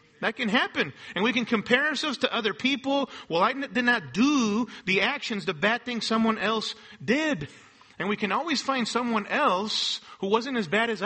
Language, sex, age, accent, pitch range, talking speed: English, male, 40-59, American, 195-255 Hz, 195 wpm